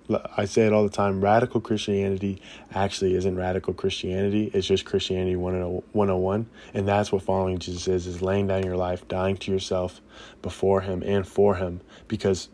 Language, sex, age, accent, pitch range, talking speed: English, male, 20-39, American, 95-110 Hz, 170 wpm